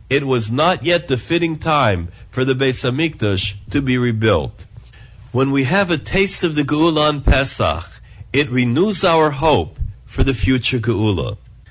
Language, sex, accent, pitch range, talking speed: English, male, American, 115-160 Hz, 160 wpm